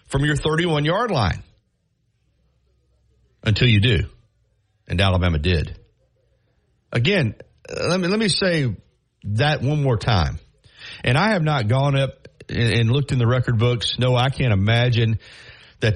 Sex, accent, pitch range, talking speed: male, American, 110-150 Hz, 145 wpm